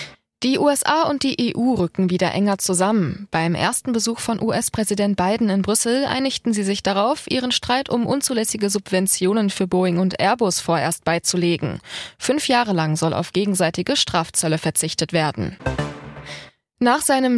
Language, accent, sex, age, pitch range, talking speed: German, German, female, 20-39, 185-245 Hz, 150 wpm